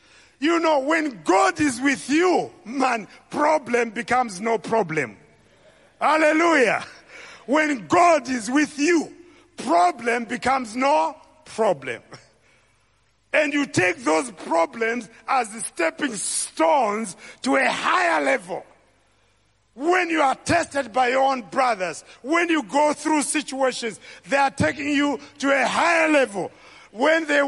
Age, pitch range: 50-69, 205-275 Hz